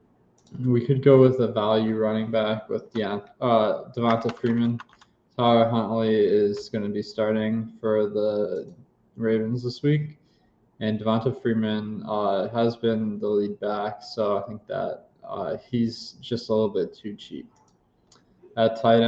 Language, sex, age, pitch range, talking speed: English, male, 20-39, 105-120 Hz, 150 wpm